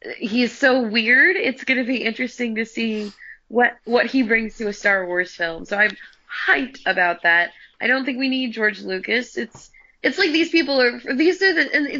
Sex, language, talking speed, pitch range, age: female, English, 200 wpm, 195-255 Hz, 20-39